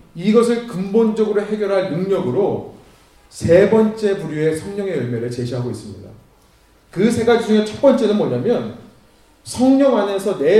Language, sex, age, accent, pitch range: Korean, male, 30-49, native, 140-230 Hz